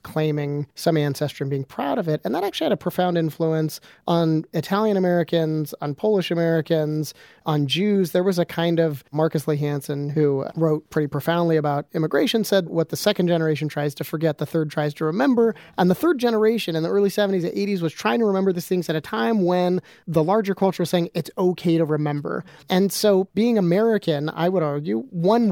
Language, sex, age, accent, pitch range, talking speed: English, male, 30-49, American, 150-190 Hz, 200 wpm